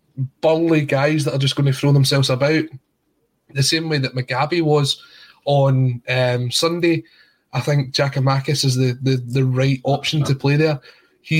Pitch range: 135-160 Hz